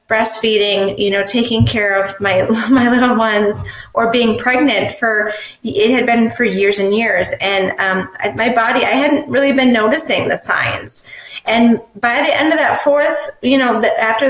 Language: English